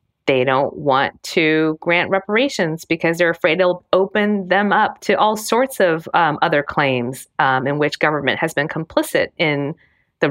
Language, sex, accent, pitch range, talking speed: English, female, American, 145-195 Hz, 170 wpm